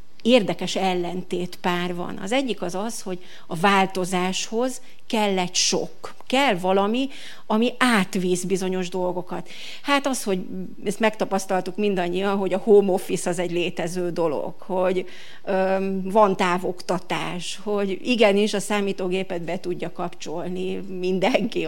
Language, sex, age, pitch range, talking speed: Hungarian, female, 30-49, 185-215 Hz, 125 wpm